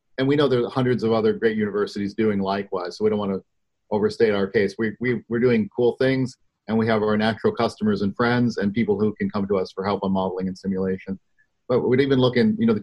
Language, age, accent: English, 40-59, American